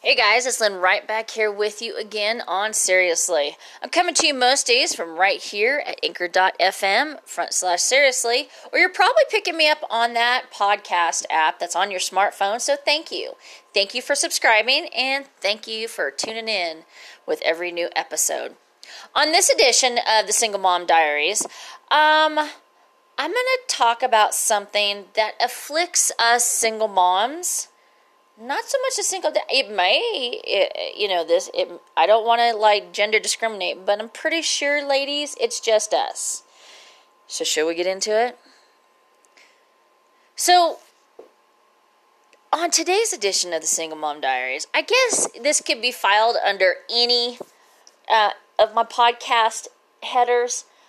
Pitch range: 210-340 Hz